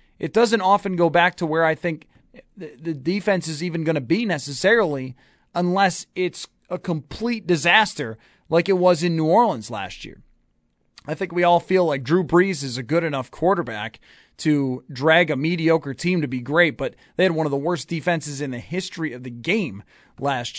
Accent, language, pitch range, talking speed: American, English, 145-185 Hz, 190 wpm